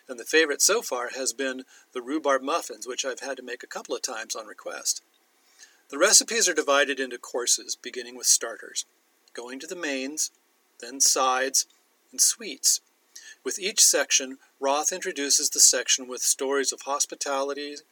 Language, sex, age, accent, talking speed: English, male, 40-59, American, 165 wpm